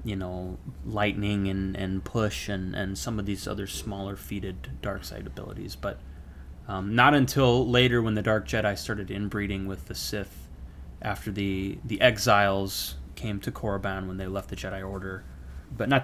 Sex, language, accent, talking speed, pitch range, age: male, English, American, 170 wpm, 80-105 Hz, 20-39